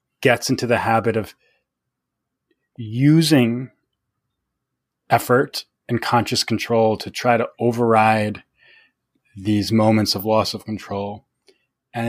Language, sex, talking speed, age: English, male, 105 wpm, 20-39